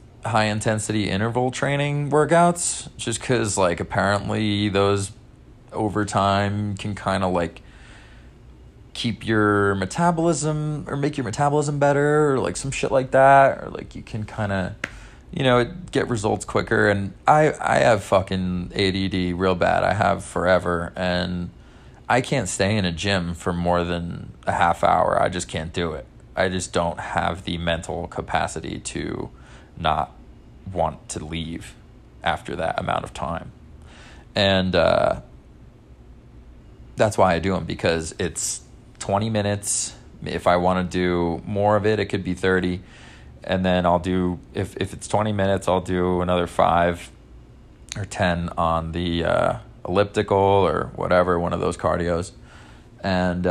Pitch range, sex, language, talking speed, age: 90-110 Hz, male, English, 150 wpm, 20-39